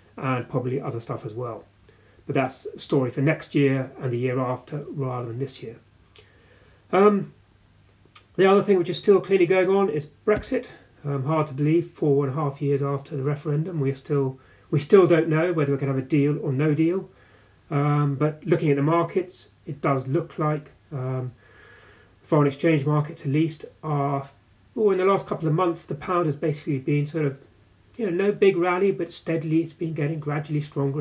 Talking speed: 205 wpm